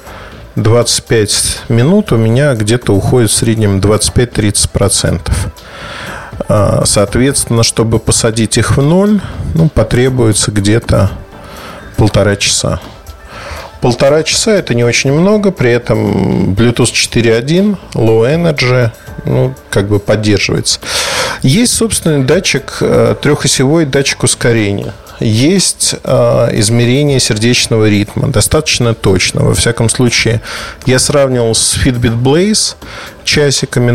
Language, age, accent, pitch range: Russian, 40-59, native, 105-135 Hz